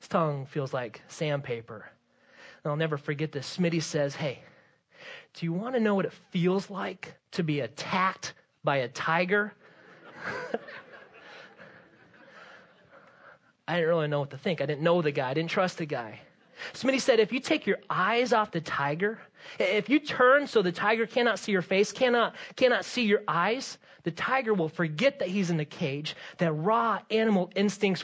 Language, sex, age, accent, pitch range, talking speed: English, male, 30-49, American, 165-215 Hz, 180 wpm